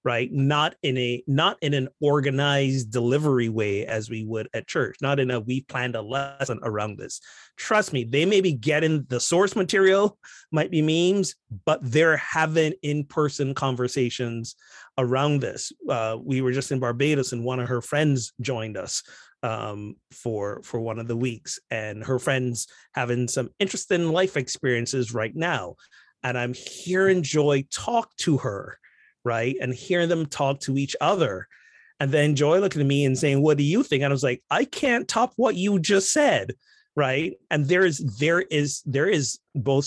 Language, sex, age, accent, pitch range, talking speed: English, male, 30-49, American, 125-155 Hz, 180 wpm